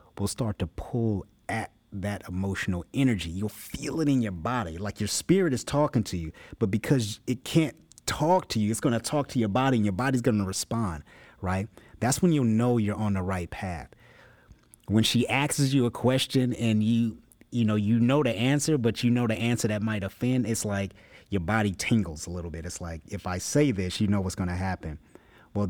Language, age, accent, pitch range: English, 30-49, American, 95-120 Hz